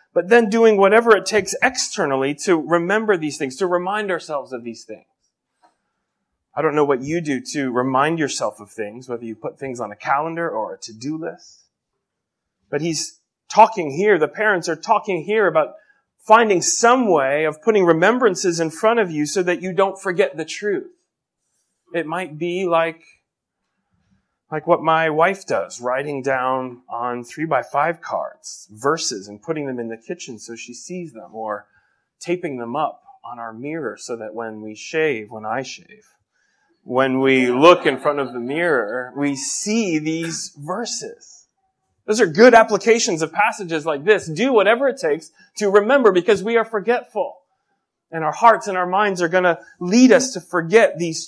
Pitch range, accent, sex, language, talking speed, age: 140-215 Hz, American, male, English, 175 wpm, 30-49